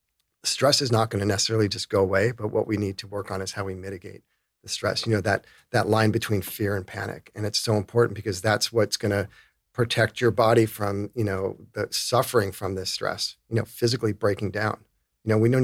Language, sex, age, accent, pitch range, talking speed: English, male, 40-59, American, 100-115 Hz, 230 wpm